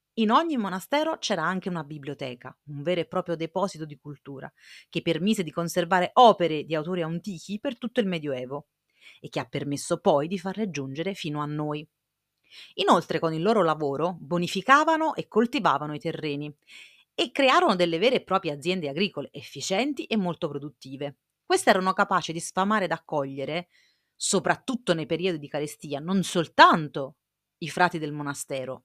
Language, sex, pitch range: Italian, female, 150-205 Hz